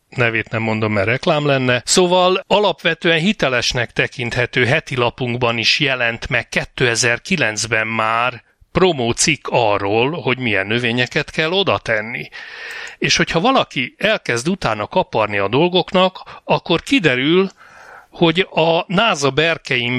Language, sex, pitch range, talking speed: Hungarian, male, 120-170 Hz, 115 wpm